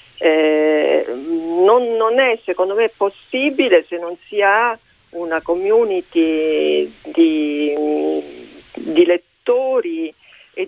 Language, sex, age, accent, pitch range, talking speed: Italian, female, 50-69, native, 155-210 Hz, 95 wpm